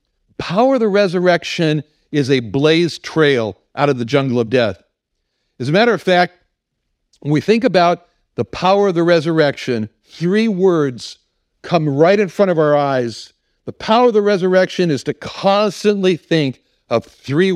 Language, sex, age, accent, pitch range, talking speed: English, male, 60-79, American, 135-175 Hz, 165 wpm